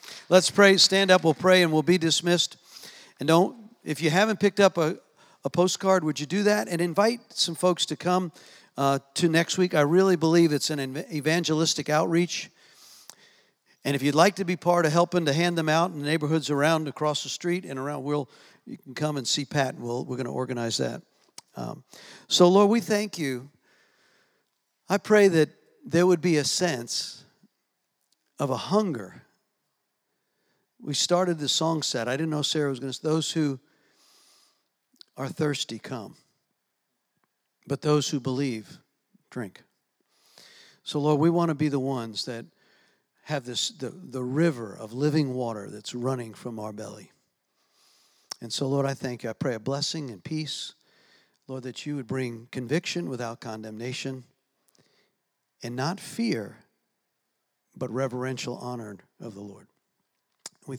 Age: 50-69